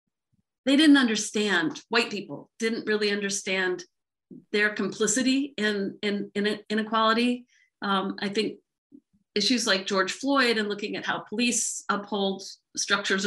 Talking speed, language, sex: 125 wpm, English, female